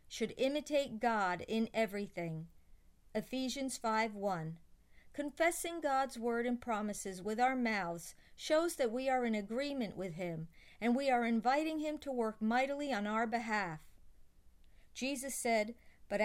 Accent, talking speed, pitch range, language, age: American, 140 wpm, 210-270 Hz, English, 50-69